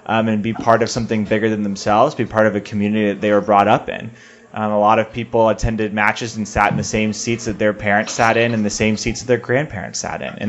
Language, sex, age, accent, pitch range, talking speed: English, male, 20-39, American, 105-130 Hz, 275 wpm